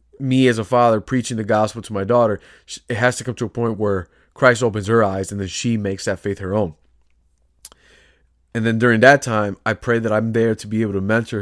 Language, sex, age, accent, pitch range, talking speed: English, male, 20-39, American, 95-125 Hz, 235 wpm